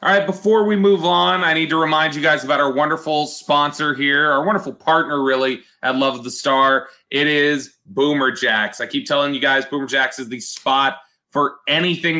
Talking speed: 205 wpm